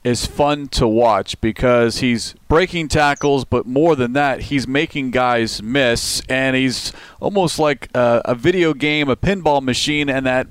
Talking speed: 165 wpm